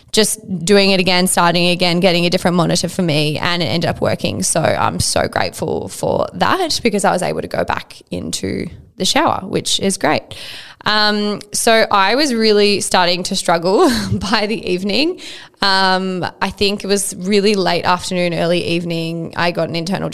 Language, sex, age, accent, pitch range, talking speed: English, female, 10-29, Australian, 175-205 Hz, 180 wpm